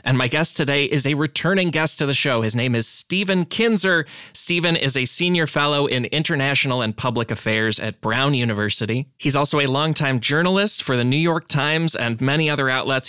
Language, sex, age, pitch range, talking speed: English, male, 20-39, 120-160 Hz, 195 wpm